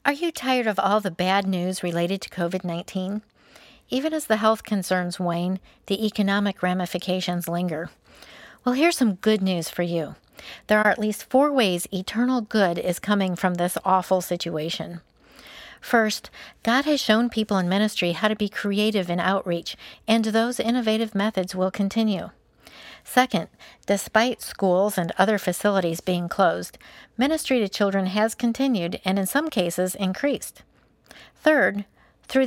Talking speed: 150 wpm